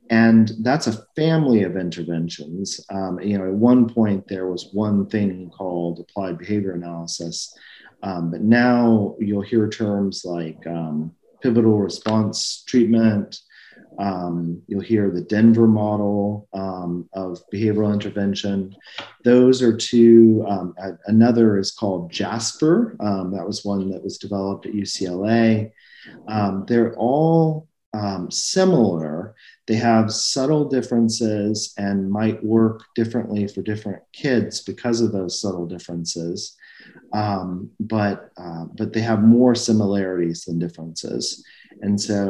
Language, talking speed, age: English, 130 wpm, 40-59